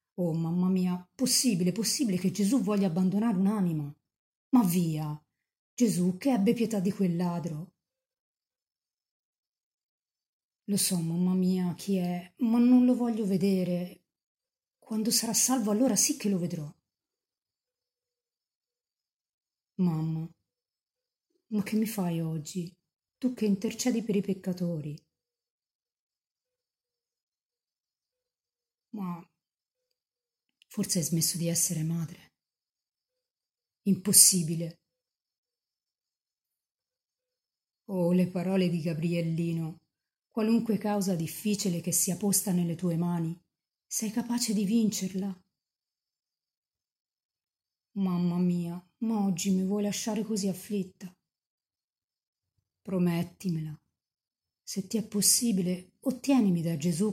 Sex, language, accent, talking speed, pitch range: female, Italian, native, 100 wpm, 175-230 Hz